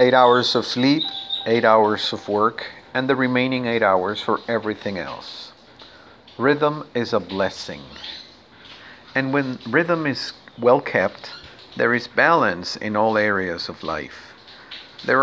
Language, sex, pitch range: Spanish, male, 105-140 Hz